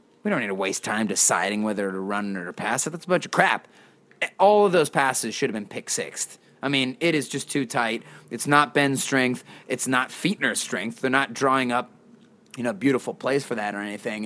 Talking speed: 230 wpm